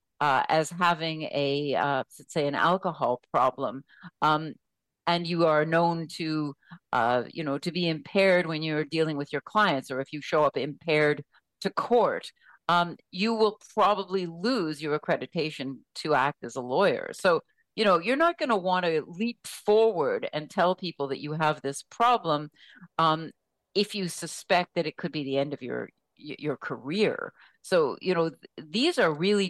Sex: female